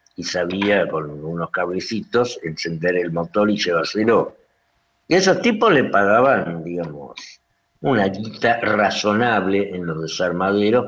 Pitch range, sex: 90-110 Hz, male